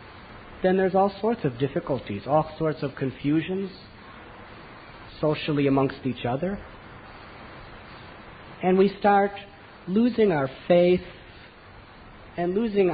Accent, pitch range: American, 130-190 Hz